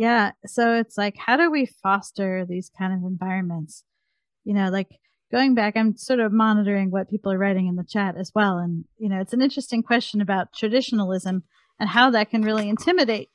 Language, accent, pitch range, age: English, American, 200-255 Hz, 40-59